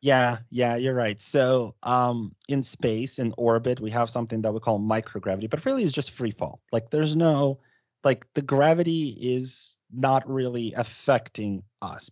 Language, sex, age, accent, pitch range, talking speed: English, male, 30-49, American, 105-125 Hz, 165 wpm